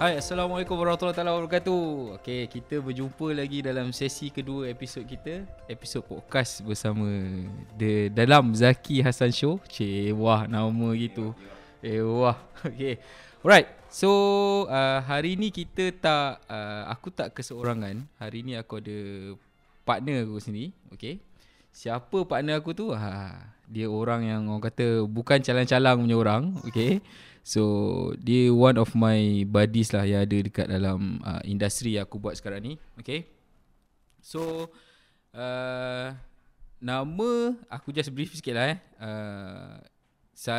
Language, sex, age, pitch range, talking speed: Malay, male, 20-39, 110-150 Hz, 130 wpm